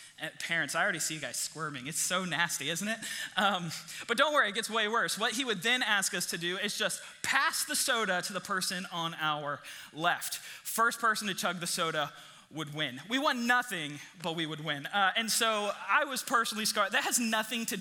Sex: male